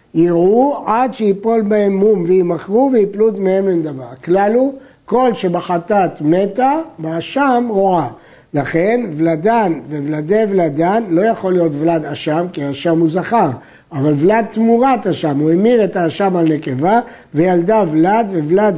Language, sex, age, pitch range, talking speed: Hebrew, male, 60-79, 170-225 Hz, 135 wpm